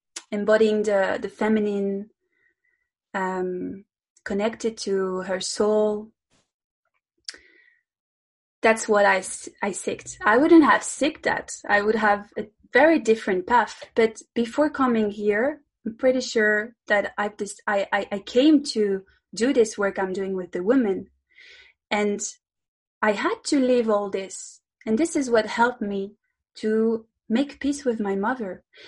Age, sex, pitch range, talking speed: 20-39, female, 200-250 Hz, 145 wpm